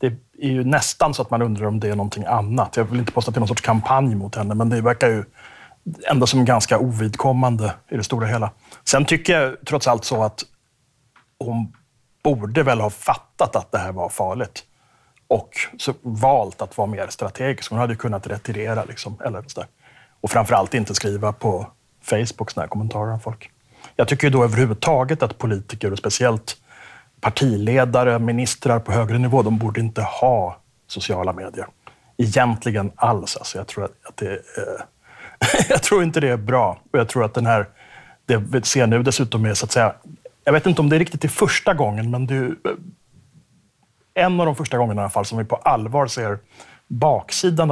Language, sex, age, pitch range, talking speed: Swedish, male, 30-49, 110-135 Hz, 190 wpm